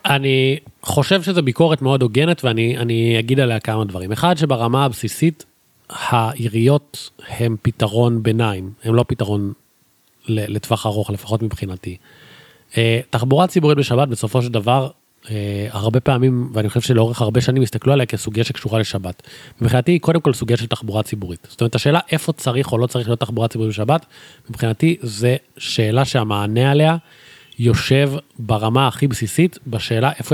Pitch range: 115-140 Hz